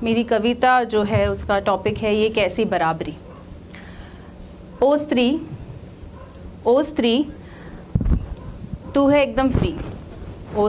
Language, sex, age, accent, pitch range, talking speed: Hindi, female, 30-49, native, 215-295 Hz, 105 wpm